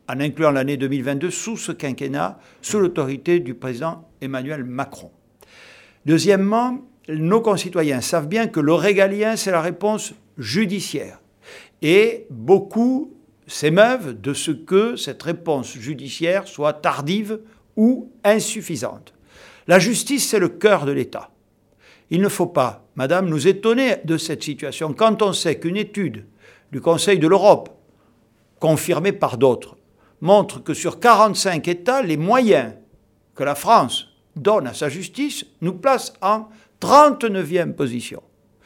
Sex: male